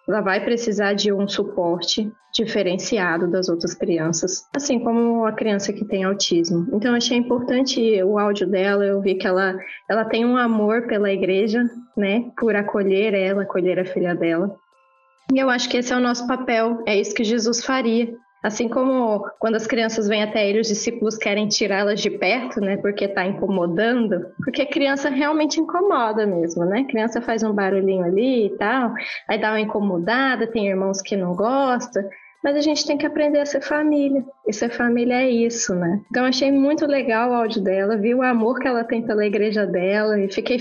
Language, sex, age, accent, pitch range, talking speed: Portuguese, female, 20-39, Brazilian, 200-245 Hz, 195 wpm